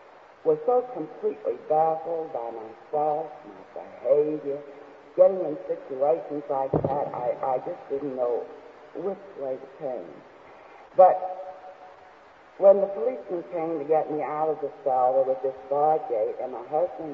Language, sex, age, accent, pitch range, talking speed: English, female, 60-79, American, 145-225 Hz, 145 wpm